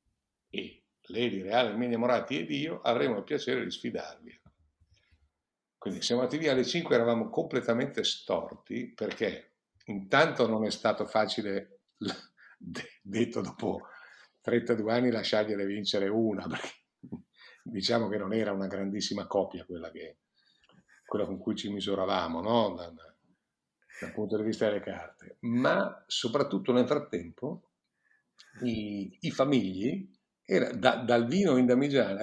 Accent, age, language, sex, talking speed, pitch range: native, 50-69, Italian, male, 130 wpm, 105-125 Hz